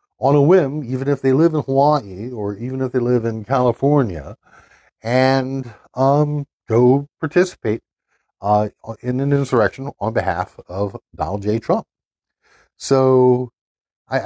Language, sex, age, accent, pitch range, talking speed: English, male, 60-79, American, 80-125 Hz, 135 wpm